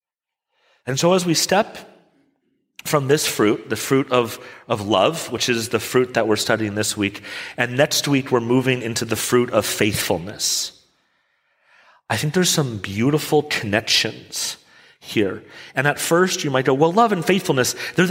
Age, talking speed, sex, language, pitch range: 40-59, 165 wpm, male, English, 105-145 Hz